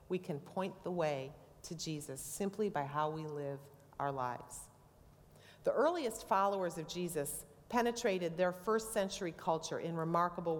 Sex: female